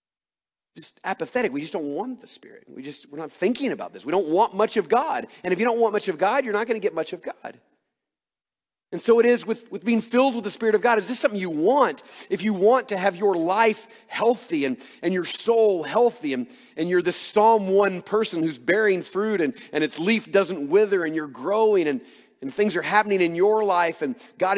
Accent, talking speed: American, 235 wpm